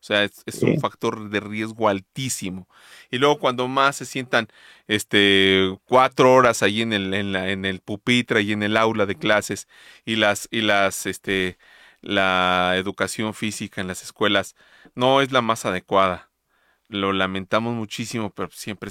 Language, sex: Spanish, male